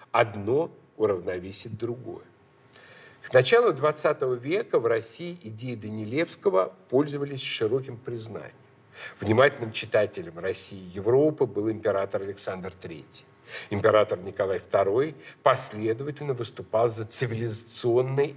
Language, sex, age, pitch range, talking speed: Russian, male, 50-69, 110-150 Hz, 100 wpm